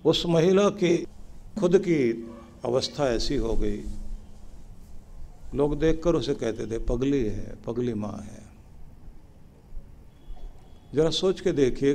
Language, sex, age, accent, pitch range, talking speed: Hindi, male, 50-69, native, 85-135 Hz, 115 wpm